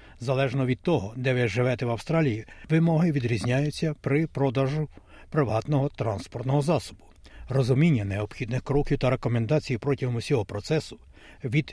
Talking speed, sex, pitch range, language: 125 wpm, male, 115-145 Hz, Ukrainian